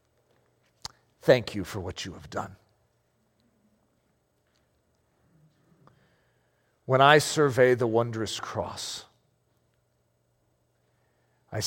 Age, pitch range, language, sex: 40-59, 100-140 Hz, English, male